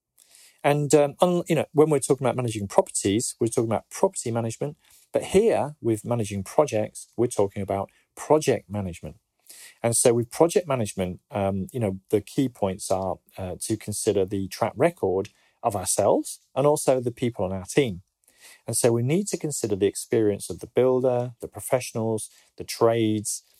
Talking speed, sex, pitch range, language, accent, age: 170 wpm, male, 100-130 Hz, English, British, 40-59